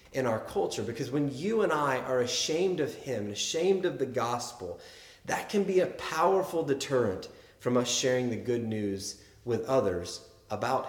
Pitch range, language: 120-155 Hz, English